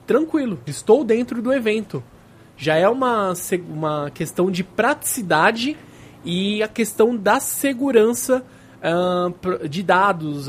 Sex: male